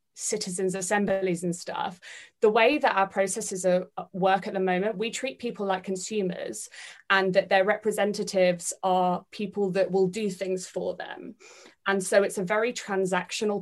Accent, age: British, 20-39